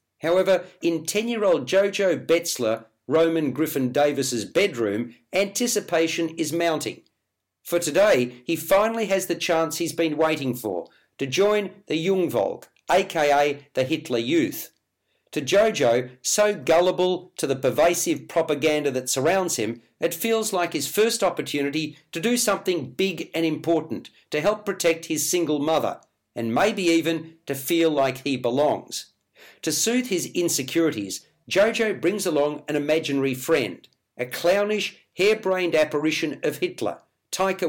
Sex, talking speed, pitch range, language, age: male, 135 wpm, 145-190 Hz, English, 50-69